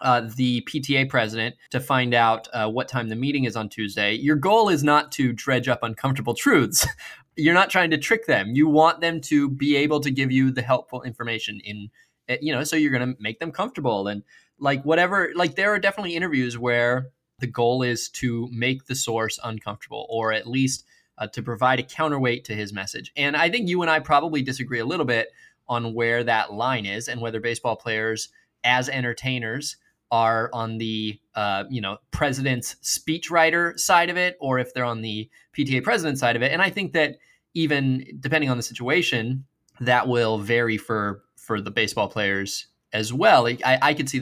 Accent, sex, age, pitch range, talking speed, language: American, male, 20-39, 115-150 Hz, 200 wpm, English